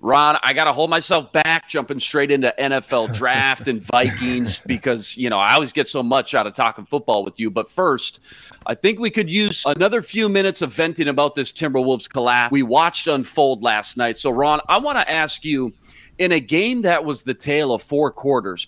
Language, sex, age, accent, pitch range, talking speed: English, male, 30-49, American, 120-155 Hz, 210 wpm